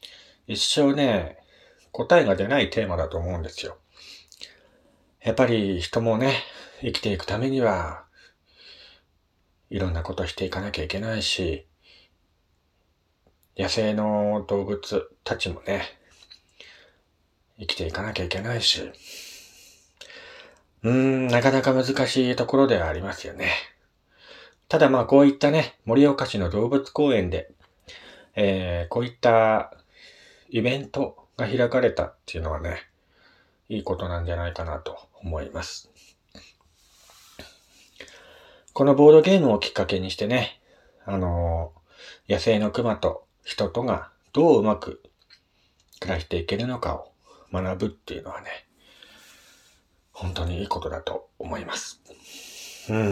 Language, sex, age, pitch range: Japanese, male, 40-59, 85-125 Hz